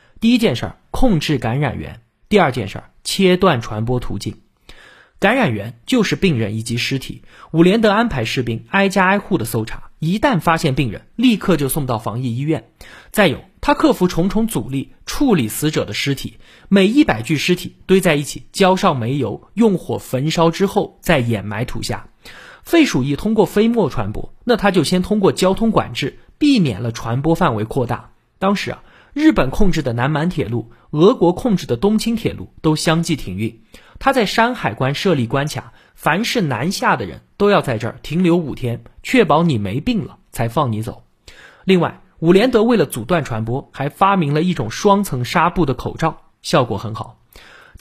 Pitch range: 120-200 Hz